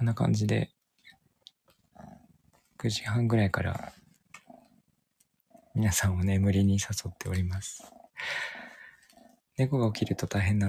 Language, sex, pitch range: Japanese, male, 100-125 Hz